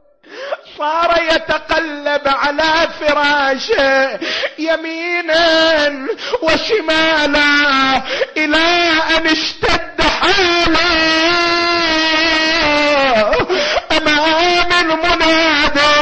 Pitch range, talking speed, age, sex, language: 280-325 Hz, 45 wpm, 40-59, male, Arabic